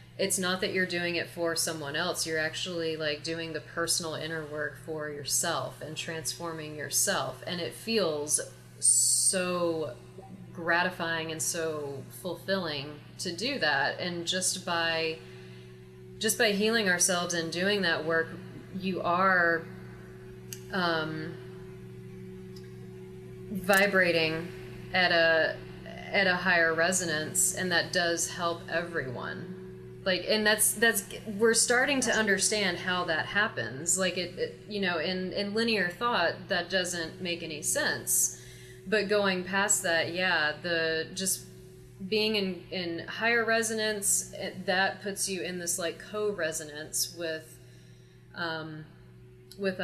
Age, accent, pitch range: 30-49, American, 145-185 Hz